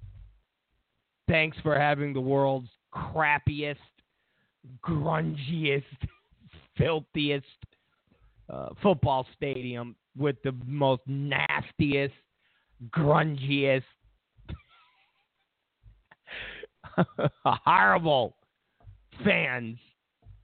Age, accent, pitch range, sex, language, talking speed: 50-69, American, 125-170 Hz, male, English, 55 wpm